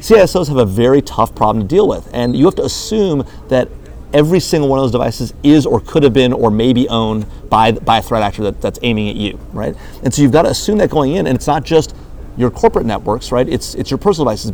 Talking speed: 260 wpm